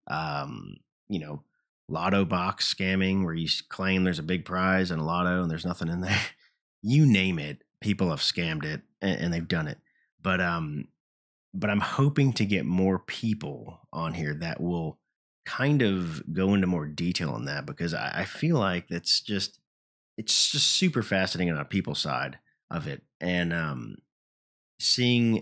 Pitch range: 85-100 Hz